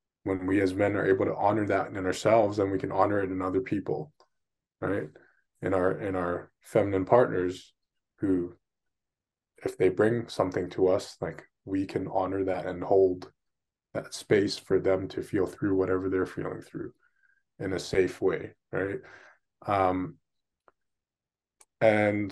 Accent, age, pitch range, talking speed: American, 20-39, 95-115 Hz, 155 wpm